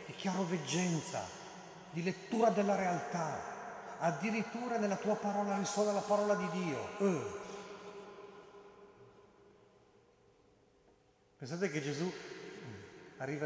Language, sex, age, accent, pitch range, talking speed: Italian, male, 40-59, native, 140-200 Hz, 85 wpm